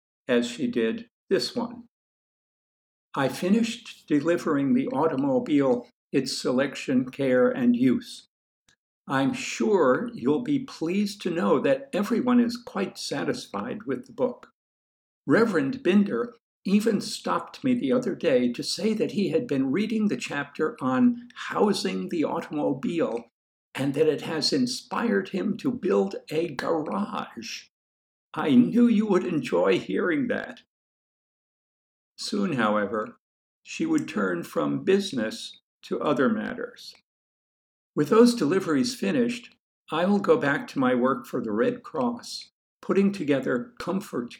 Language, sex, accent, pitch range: English, male, American, 185-250 Hz